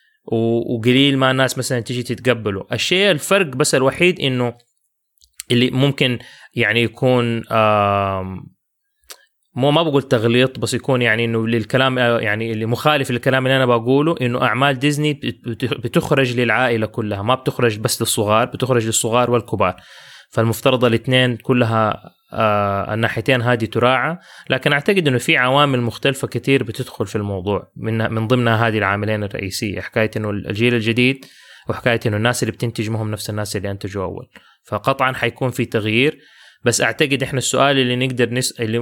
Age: 20-39